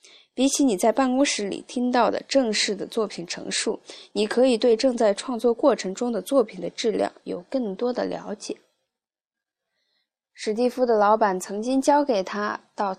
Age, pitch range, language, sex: 20-39, 190-255 Hz, Chinese, female